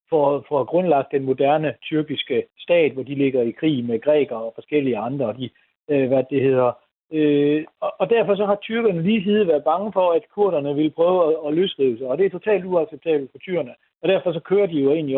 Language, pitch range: Danish, 135-175 Hz